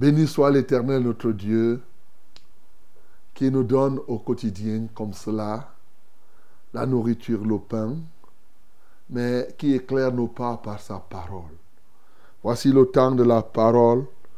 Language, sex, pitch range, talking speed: French, male, 110-130 Hz, 125 wpm